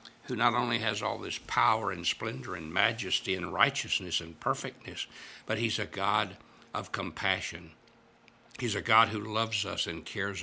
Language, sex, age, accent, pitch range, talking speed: English, male, 60-79, American, 90-110 Hz, 165 wpm